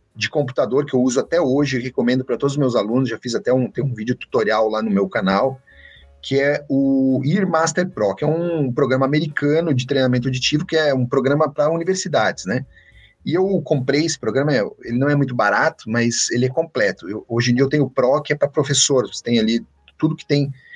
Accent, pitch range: Brazilian, 125-175 Hz